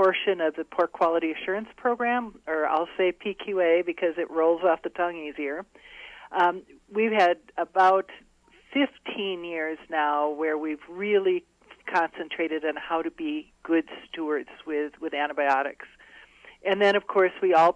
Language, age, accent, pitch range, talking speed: English, 50-69, American, 155-185 Hz, 150 wpm